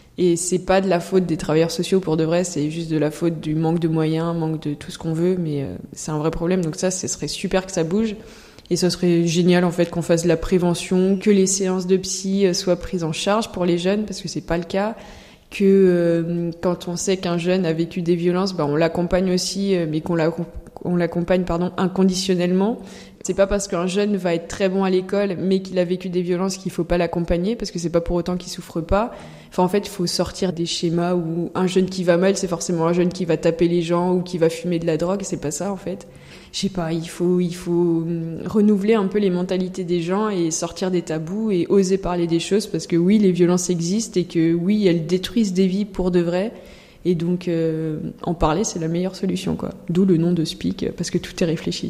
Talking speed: 245 wpm